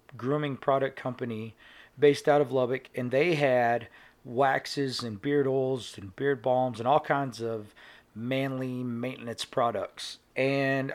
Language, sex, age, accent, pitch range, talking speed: English, male, 40-59, American, 120-145 Hz, 135 wpm